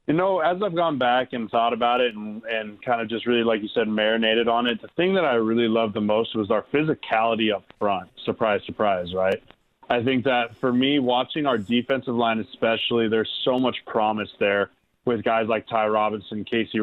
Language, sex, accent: English, male, American